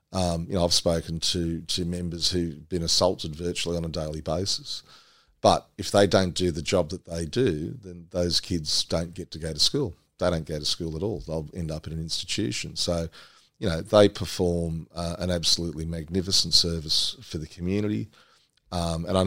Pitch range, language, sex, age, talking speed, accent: 80-90 Hz, English, male, 40-59, 200 wpm, Australian